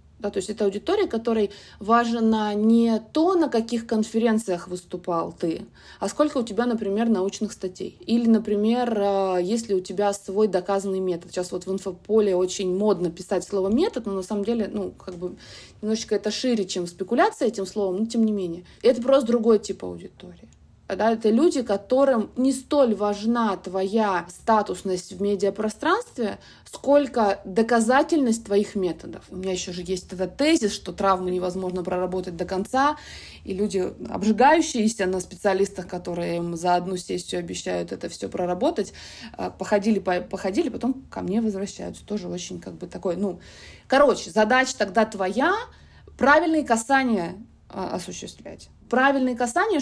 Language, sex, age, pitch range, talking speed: Russian, female, 20-39, 185-240 Hz, 150 wpm